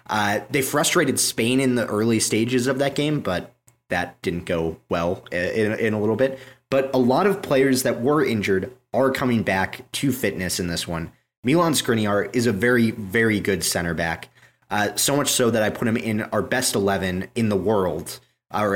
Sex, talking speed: male, 200 wpm